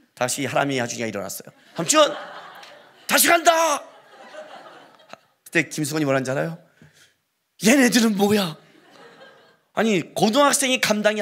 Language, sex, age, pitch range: Korean, male, 40-59, 145-215 Hz